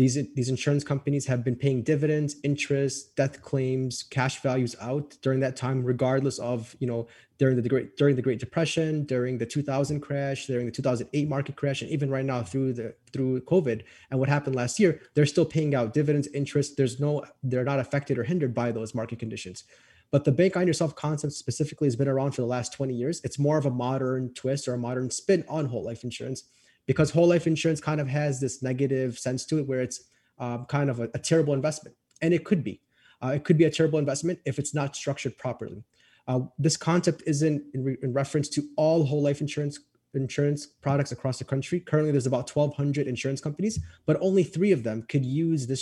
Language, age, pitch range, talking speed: English, 20-39, 130-150 Hz, 215 wpm